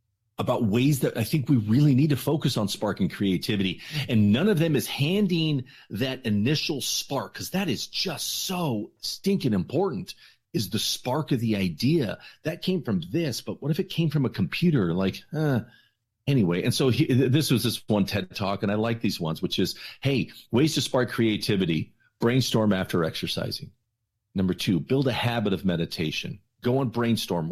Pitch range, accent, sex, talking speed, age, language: 105-145 Hz, American, male, 180 wpm, 40-59, English